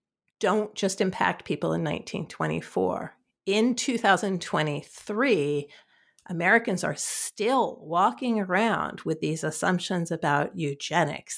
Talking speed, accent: 95 wpm, American